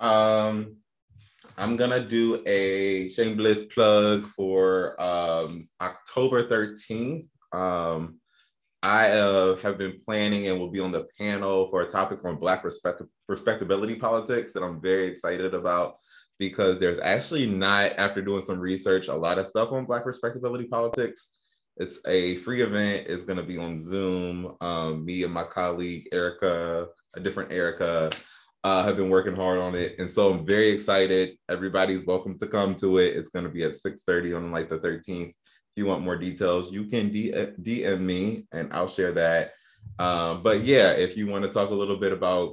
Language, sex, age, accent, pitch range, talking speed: English, male, 20-39, American, 90-110 Hz, 175 wpm